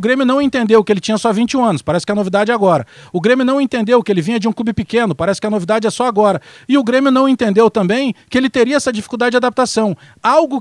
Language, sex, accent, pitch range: Portuguese, male, Brazilian, 190-245 Hz